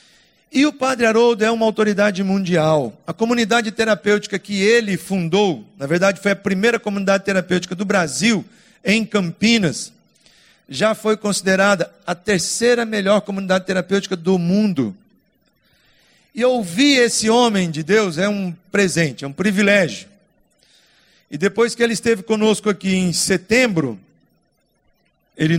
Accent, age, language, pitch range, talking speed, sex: Brazilian, 50-69, Portuguese, 195-225 Hz, 135 wpm, male